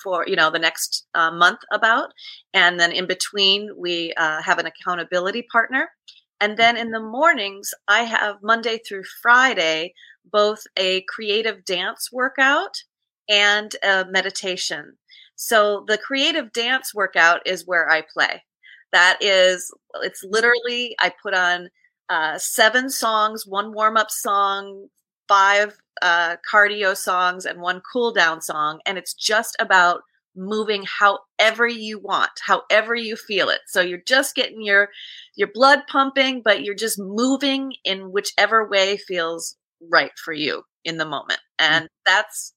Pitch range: 180-230 Hz